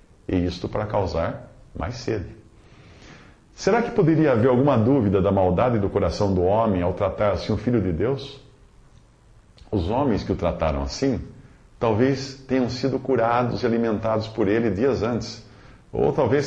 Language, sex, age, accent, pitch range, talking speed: English, male, 50-69, Brazilian, 95-130 Hz, 155 wpm